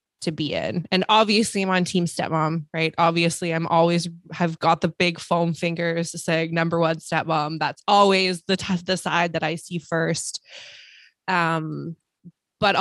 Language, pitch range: English, 165-190 Hz